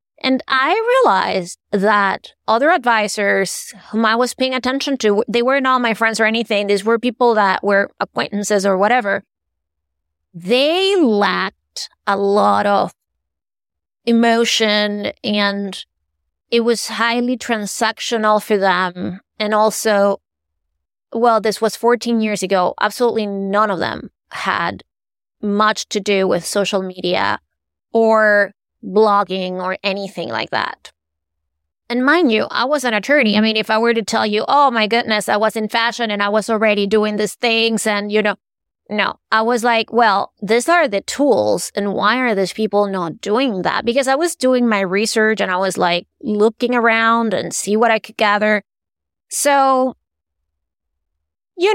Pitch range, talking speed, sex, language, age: 200-235 Hz, 155 wpm, female, English, 20-39